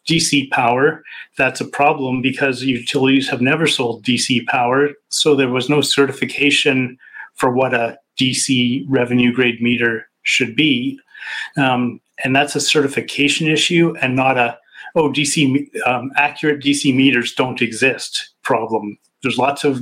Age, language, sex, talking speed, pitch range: 40-59, English, male, 140 wpm, 125-140 Hz